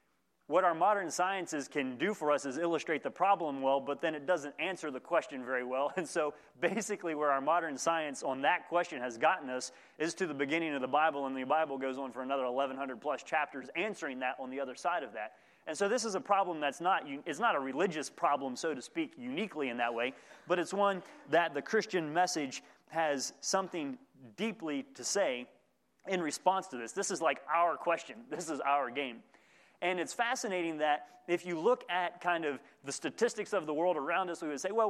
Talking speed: 215 wpm